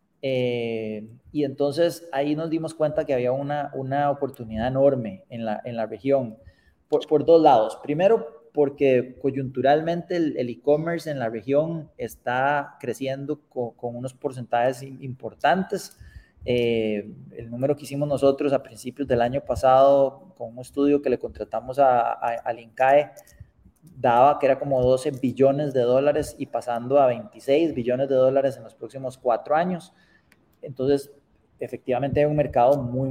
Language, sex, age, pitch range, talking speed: English, male, 20-39, 120-145 Hz, 155 wpm